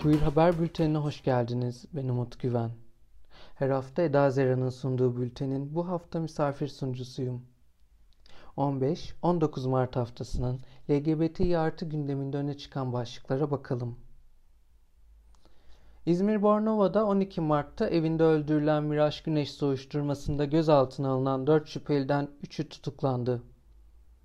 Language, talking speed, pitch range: Turkish, 105 wpm, 130-165 Hz